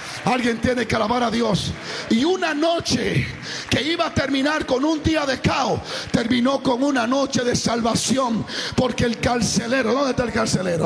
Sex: male